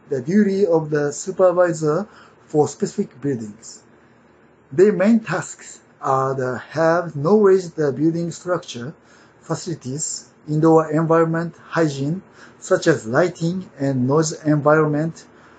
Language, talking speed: English, 110 wpm